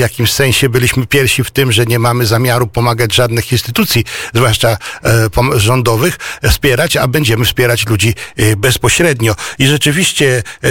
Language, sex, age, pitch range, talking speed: Polish, male, 60-79, 120-140 Hz, 145 wpm